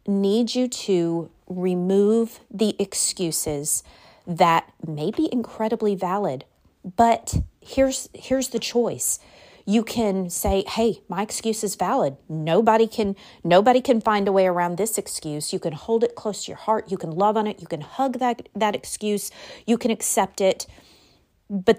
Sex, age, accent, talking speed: female, 30-49, American, 160 wpm